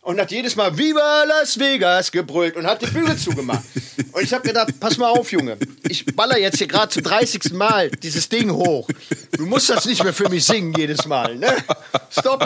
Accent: German